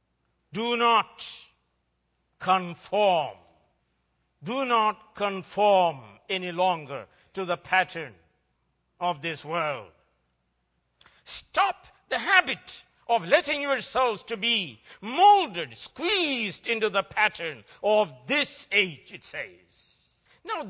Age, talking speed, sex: 60-79, 95 wpm, male